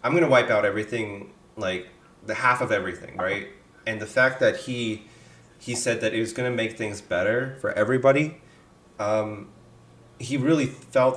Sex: male